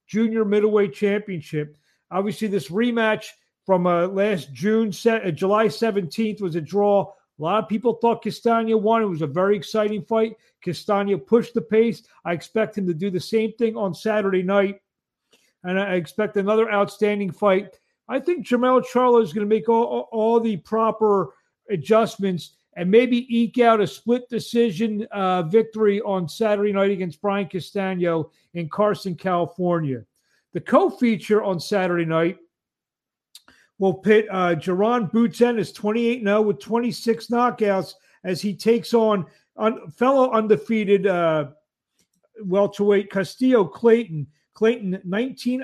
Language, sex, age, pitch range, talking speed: English, male, 40-59, 185-225 Hz, 150 wpm